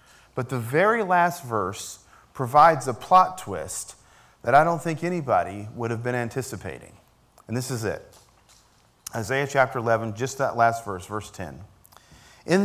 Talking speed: 150 wpm